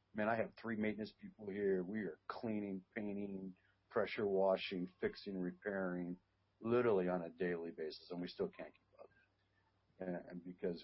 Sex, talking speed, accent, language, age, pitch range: male, 160 wpm, American, English, 50-69, 90-100 Hz